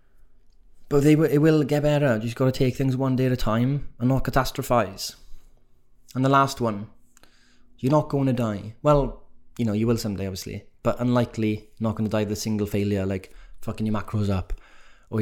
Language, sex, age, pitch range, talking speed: English, male, 20-39, 110-125 Hz, 195 wpm